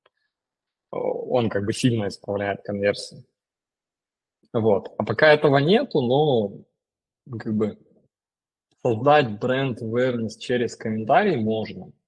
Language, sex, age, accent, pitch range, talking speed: Russian, male, 20-39, native, 105-130 Hz, 100 wpm